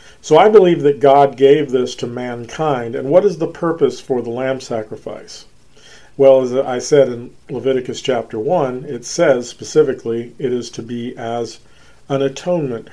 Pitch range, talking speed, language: 120-145 Hz, 165 wpm, English